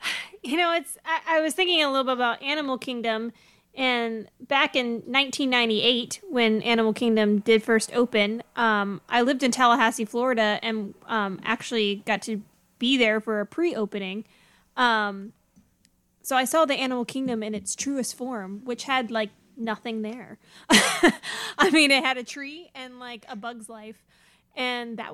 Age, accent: 20-39, American